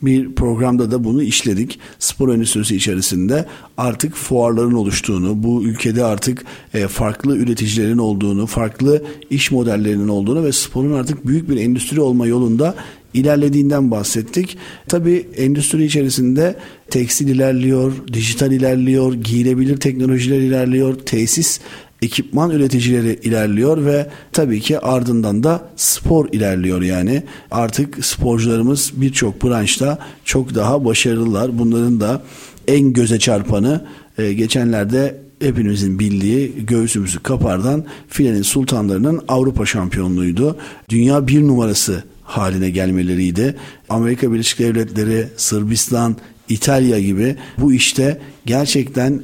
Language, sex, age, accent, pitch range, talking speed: Turkish, male, 50-69, native, 110-140 Hz, 105 wpm